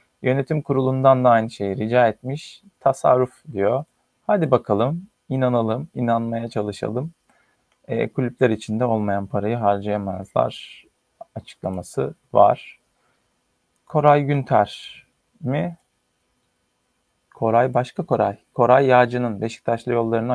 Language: Turkish